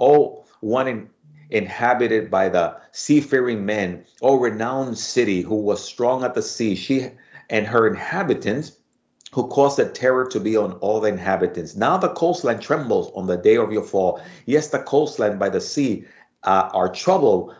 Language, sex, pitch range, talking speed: English, male, 105-140 Hz, 175 wpm